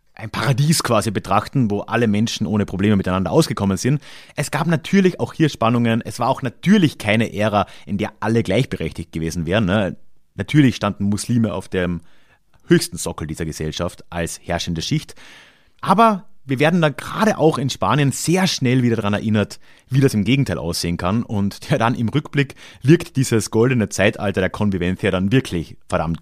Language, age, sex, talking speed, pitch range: German, 30-49, male, 170 wpm, 100-130 Hz